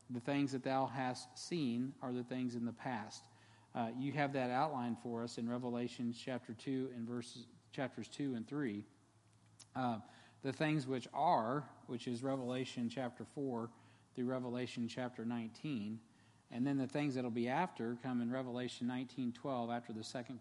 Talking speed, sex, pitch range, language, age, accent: 170 wpm, male, 115-130 Hz, English, 40-59, American